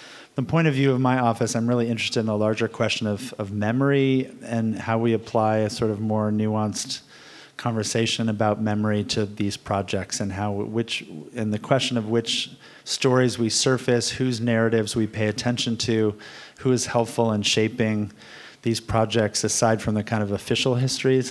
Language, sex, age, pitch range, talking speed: English, male, 30-49, 105-120 Hz, 175 wpm